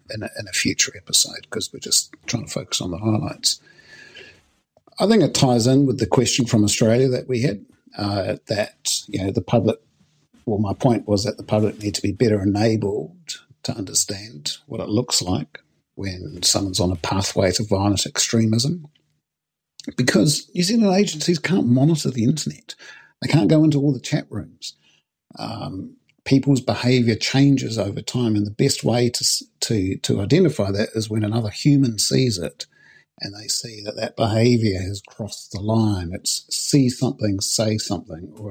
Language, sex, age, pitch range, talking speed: English, male, 50-69, 100-130 Hz, 175 wpm